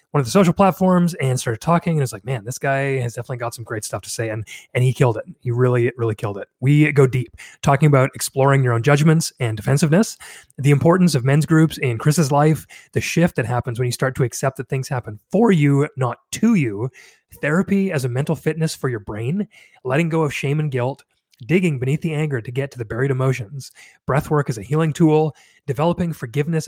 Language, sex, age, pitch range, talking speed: English, male, 30-49, 125-155 Hz, 225 wpm